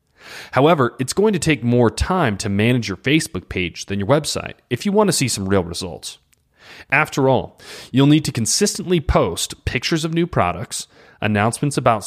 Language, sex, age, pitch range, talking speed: English, male, 30-49, 100-150 Hz, 180 wpm